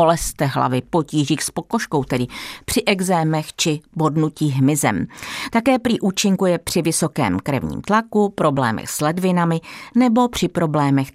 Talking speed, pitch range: 135 wpm, 145-205 Hz